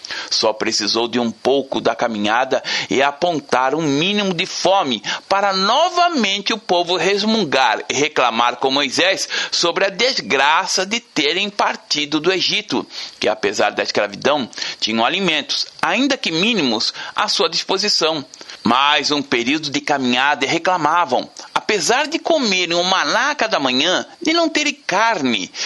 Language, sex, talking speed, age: Portuguese, male, 140 wpm, 60-79